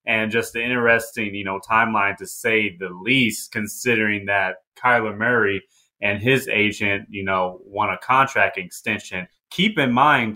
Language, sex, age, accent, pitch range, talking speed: English, male, 30-49, American, 105-130 Hz, 155 wpm